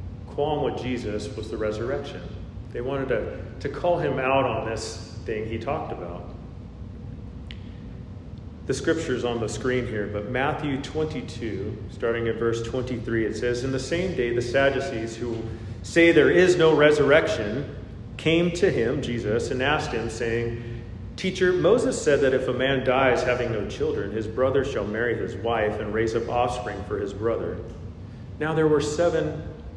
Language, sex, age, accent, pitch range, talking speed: English, male, 40-59, American, 105-130 Hz, 165 wpm